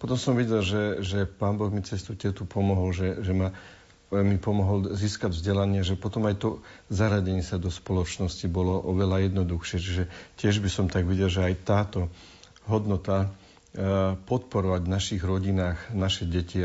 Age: 50-69